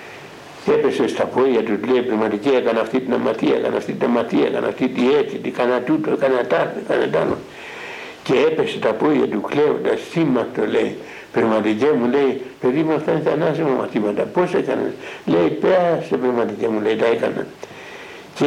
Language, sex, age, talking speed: Greek, male, 60-79, 135 wpm